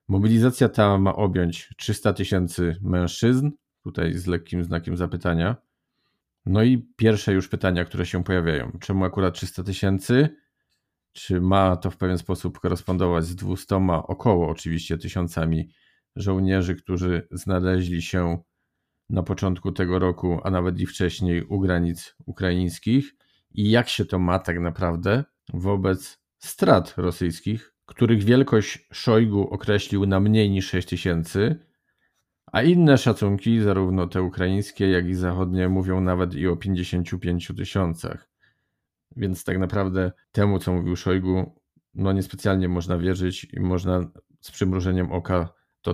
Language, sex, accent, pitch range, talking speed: Polish, male, native, 90-105 Hz, 130 wpm